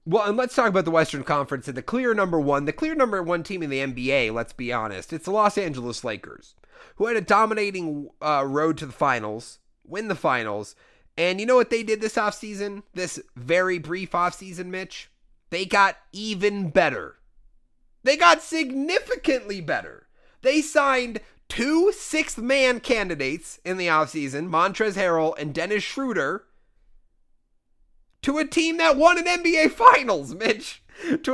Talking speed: 165 wpm